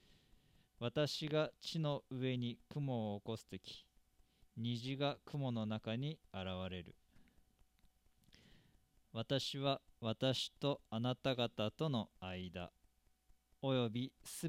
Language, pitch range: Japanese, 100-135 Hz